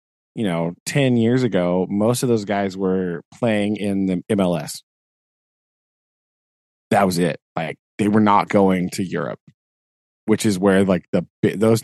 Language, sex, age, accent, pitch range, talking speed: English, male, 20-39, American, 95-115 Hz, 150 wpm